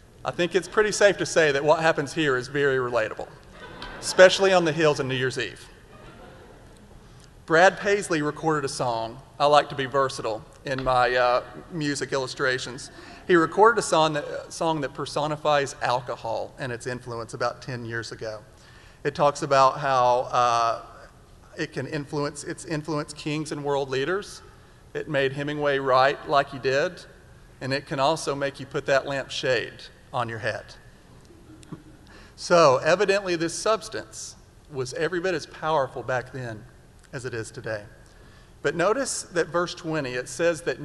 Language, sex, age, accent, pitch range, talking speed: English, male, 40-59, American, 130-160 Hz, 165 wpm